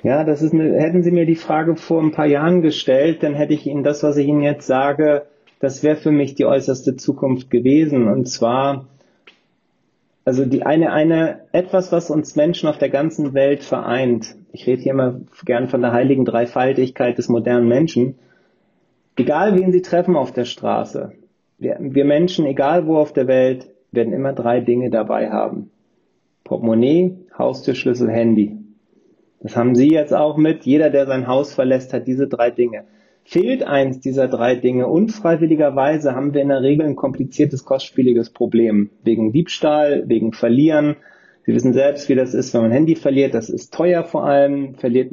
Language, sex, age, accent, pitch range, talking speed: German, male, 30-49, German, 125-155 Hz, 180 wpm